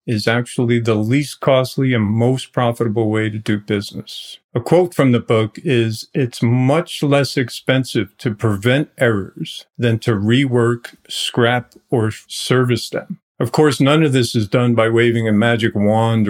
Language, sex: English, male